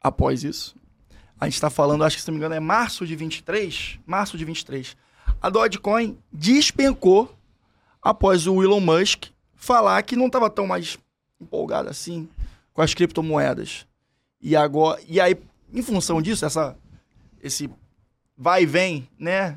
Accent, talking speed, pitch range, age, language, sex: Brazilian, 155 wpm, 150-190 Hz, 20-39, Portuguese, male